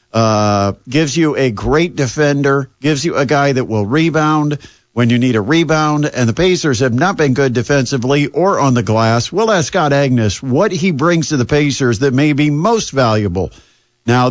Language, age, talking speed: English, 50-69, 195 wpm